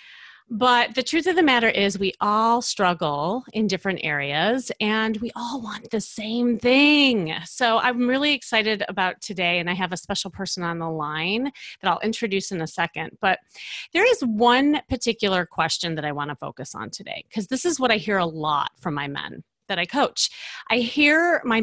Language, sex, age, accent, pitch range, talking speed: English, female, 30-49, American, 175-245 Hz, 195 wpm